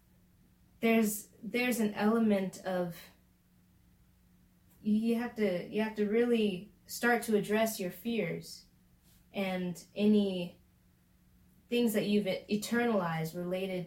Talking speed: 105 wpm